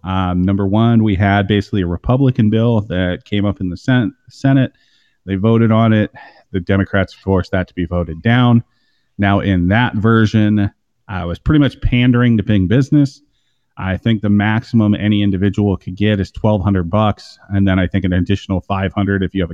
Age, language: 30-49, English